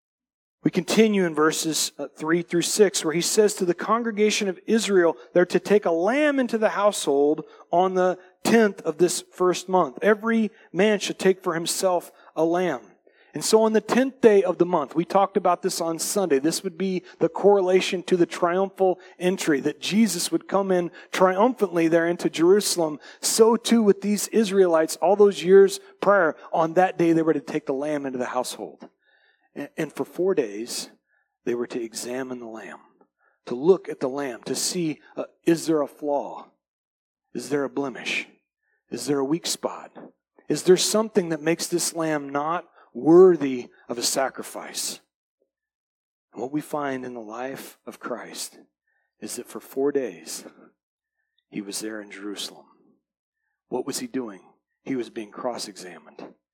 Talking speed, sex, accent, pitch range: 170 wpm, male, American, 150-205 Hz